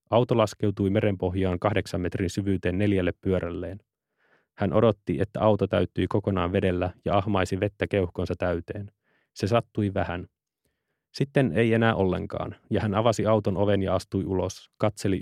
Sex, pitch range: male, 95-110 Hz